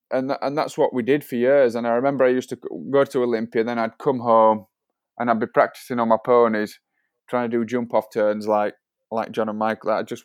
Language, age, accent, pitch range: English, 20-39, British, 110-125 Hz